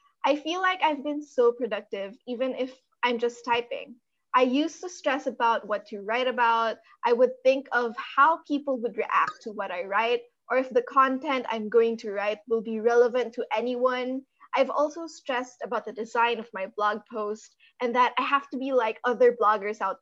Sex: female